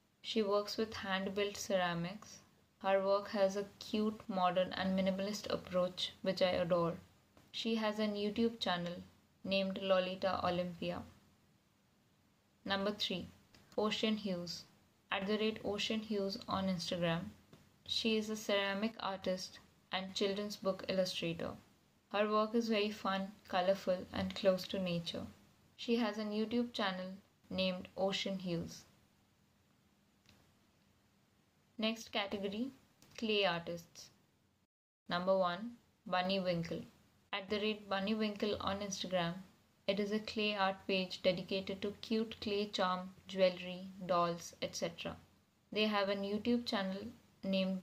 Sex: female